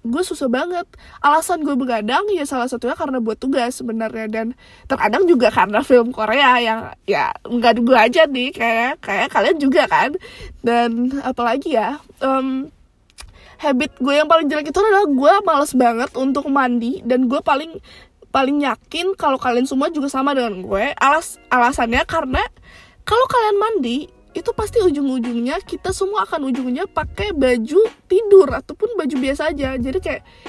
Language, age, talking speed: Indonesian, 20-39, 155 wpm